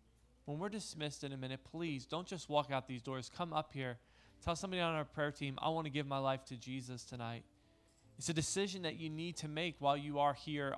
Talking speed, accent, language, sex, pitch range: 240 wpm, American, English, male, 130-155 Hz